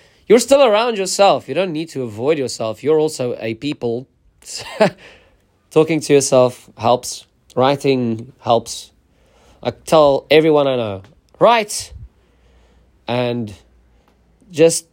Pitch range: 115-170 Hz